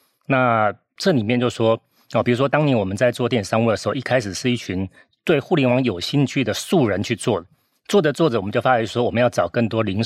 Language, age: Chinese, 40-59